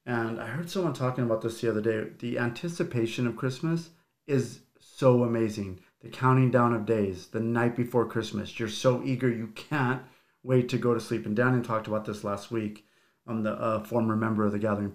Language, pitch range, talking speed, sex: English, 110-130 Hz, 205 wpm, male